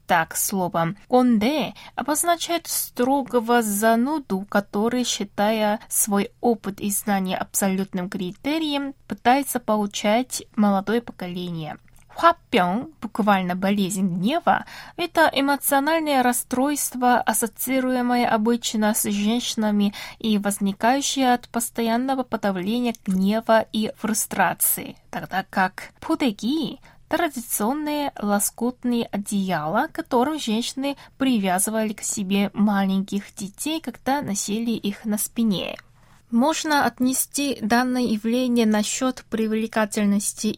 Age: 20-39